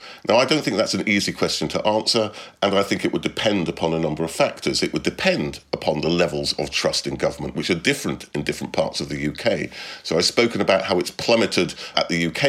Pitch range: 85-145 Hz